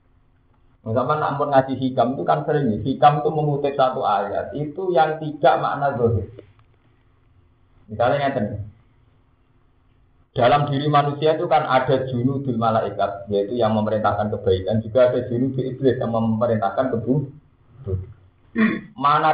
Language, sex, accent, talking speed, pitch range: Indonesian, male, native, 130 wpm, 110-150 Hz